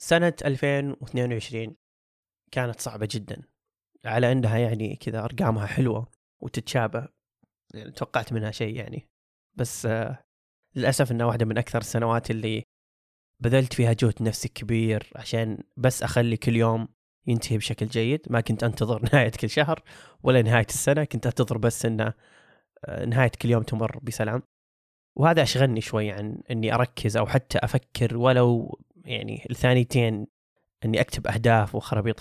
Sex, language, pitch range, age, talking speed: male, Arabic, 110-130 Hz, 20-39, 135 wpm